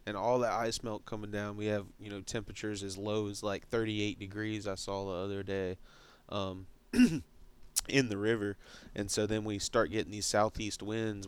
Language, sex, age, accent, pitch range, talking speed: English, male, 20-39, American, 100-115 Hz, 190 wpm